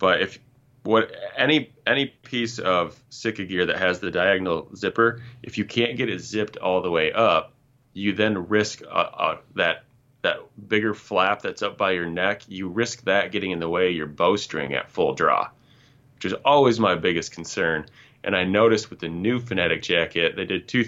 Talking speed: 195 wpm